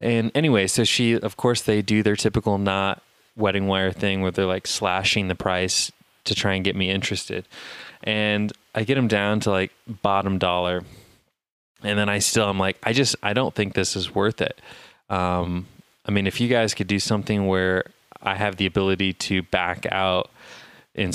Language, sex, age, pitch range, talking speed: English, male, 20-39, 95-115 Hz, 195 wpm